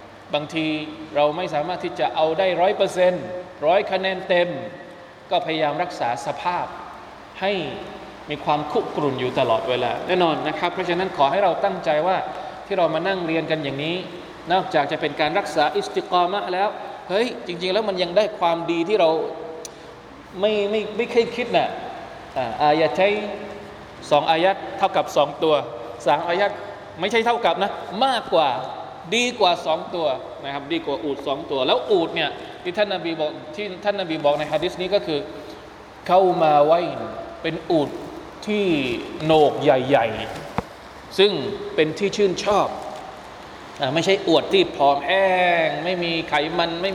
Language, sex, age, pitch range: Thai, male, 20-39, 155-190 Hz